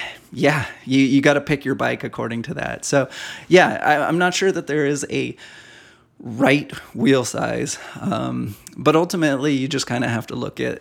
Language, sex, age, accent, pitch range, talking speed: English, male, 20-39, American, 125-155 Hz, 190 wpm